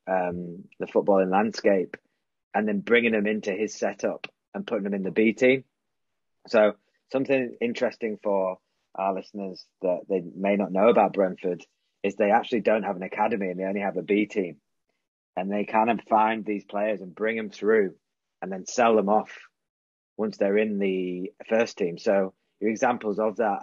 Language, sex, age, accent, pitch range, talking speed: English, male, 30-49, British, 95-110 Hz, 185 wpm